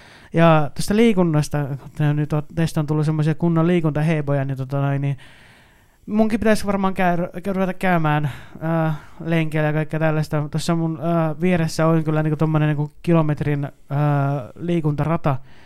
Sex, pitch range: male, 145-165 Hz